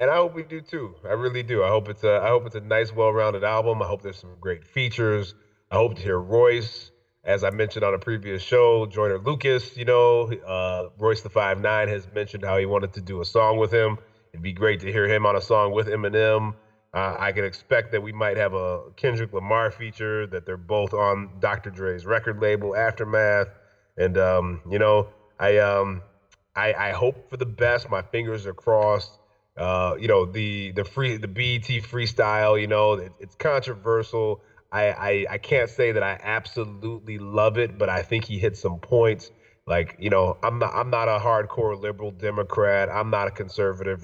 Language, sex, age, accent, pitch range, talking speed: English, male, 30-49, American, 100-115 Hz, 205 wpm